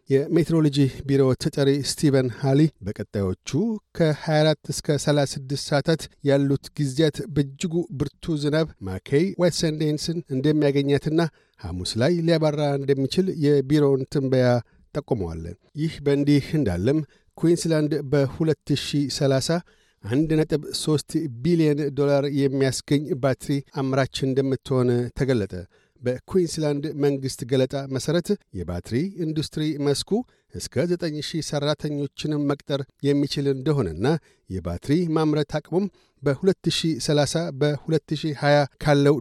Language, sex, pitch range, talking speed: Amharic, male, 135-160 Hz, 90 wpm